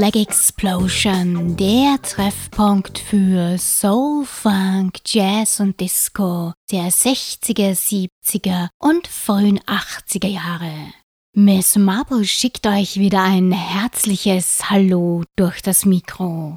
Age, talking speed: 20-39, 100 wpm